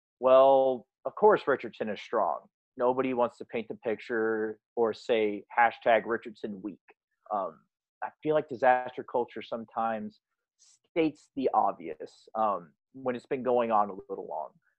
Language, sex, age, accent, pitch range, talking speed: English, male, 30-49, American, 115-140 Hz, 140 wpm